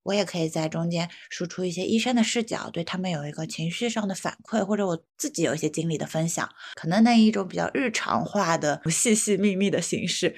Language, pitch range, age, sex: Chinese, 165-210 Hz, 20-39, female